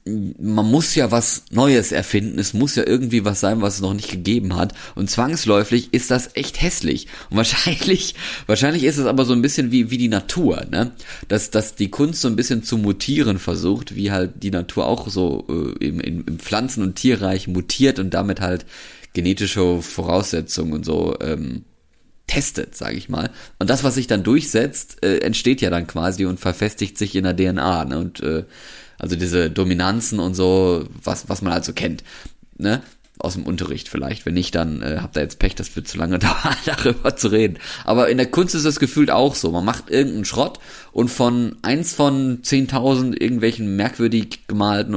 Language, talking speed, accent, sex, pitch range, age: German, 195 wpm, German, male, 90-125 Hz, 30-49